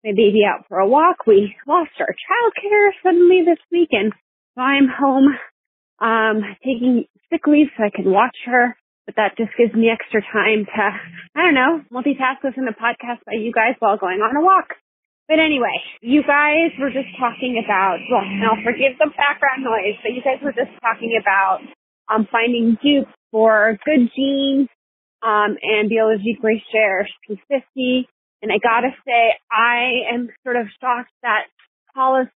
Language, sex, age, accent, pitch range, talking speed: English, female, 30-49, American, 220-275 Hz, 180 wpm